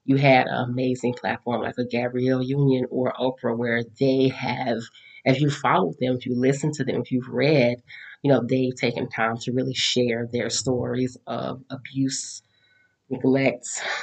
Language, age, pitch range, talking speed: English, 30-49, 125-140 Hz, 165 wpm